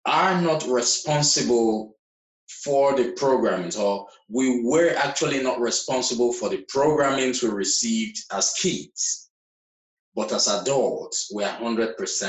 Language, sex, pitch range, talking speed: English, male, 125-185 Hz, 115 wpm